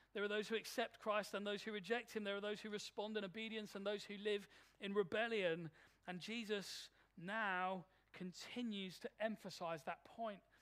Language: English